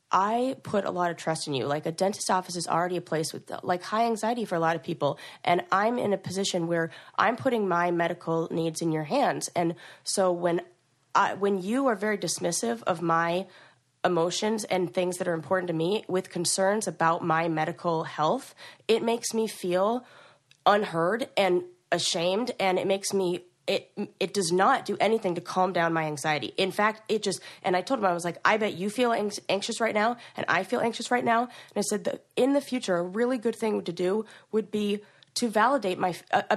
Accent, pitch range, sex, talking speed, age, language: American, 175-220 Hz, female, 215 wpm, 20-39, English